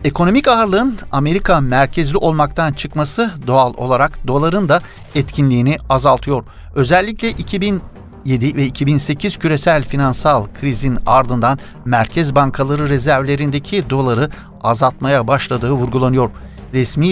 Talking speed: 100 wpm